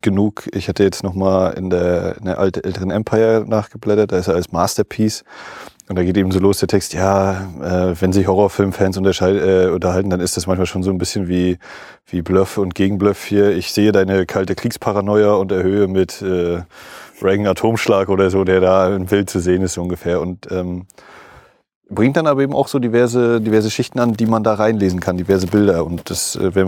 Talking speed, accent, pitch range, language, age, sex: 205 wpm, German, 95-110 Hz, German, 30-49, male